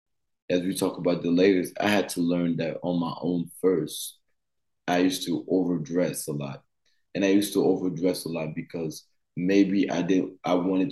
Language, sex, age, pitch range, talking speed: English, male, 20-39, 85-95 Hz, 185 wpm